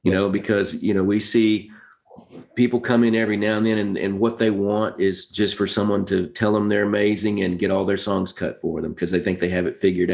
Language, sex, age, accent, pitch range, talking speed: English, male, 40-59, American, 95-115 Hz, 255 wpm